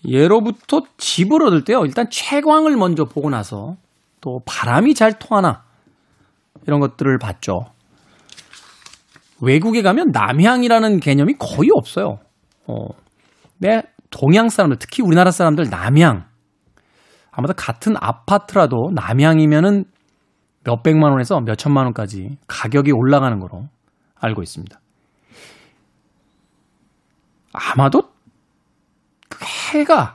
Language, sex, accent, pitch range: Korean, male, native, 135-220 Hz